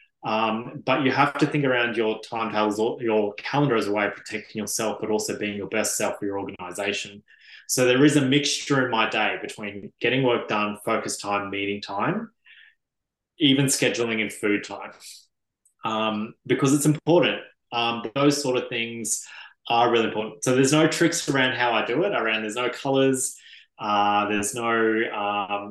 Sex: male